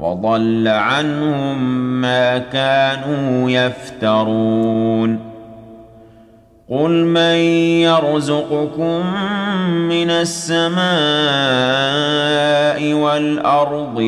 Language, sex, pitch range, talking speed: Arabic, male, 115-150 Hz, 45 wpm